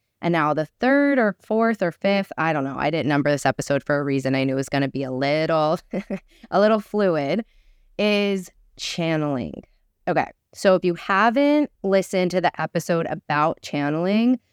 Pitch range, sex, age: 150-190 Hz, female, 20-39